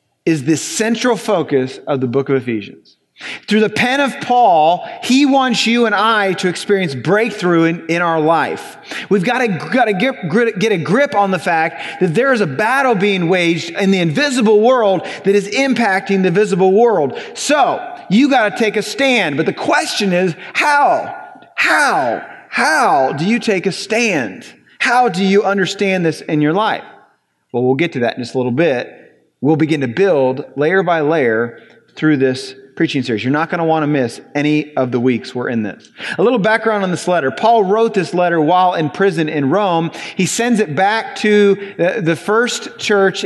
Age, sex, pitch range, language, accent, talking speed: 30-49, male, 155-210 Hz, English, American, 195 wpm